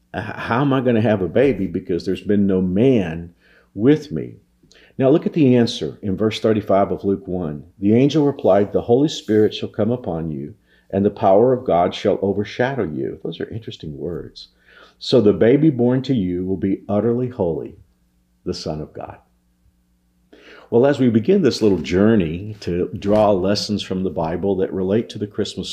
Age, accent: 50-69, American